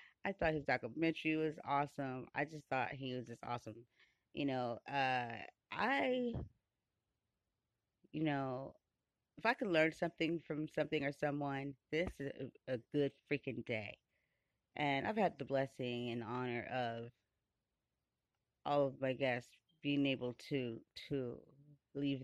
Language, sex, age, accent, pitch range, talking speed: English, female, 30-49, American, 125-160 Hz, 140 wpm